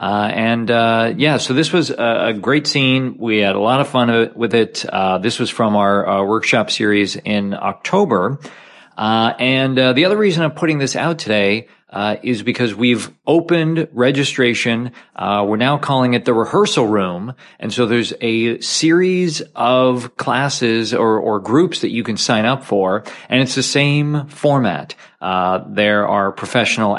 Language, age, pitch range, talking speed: English, 40-59, 105-140 Hz, 175 wpm